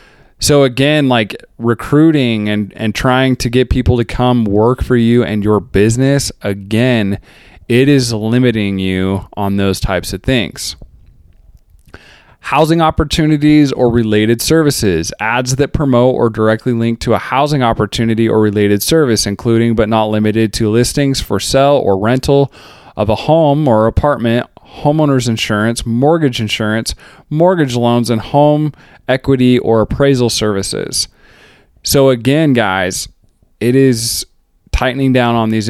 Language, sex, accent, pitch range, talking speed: English, male, American, 110-135 Hz, 140 wpm